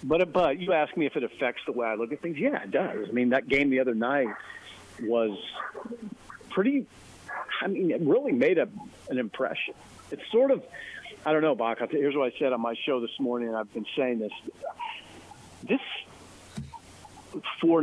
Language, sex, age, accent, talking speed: English, male, 50-69, American, 190 wpm